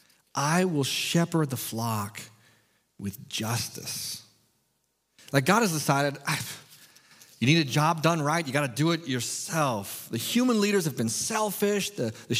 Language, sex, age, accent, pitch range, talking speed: English, male, 40-59, American, 115-170 Hz, 155 wpm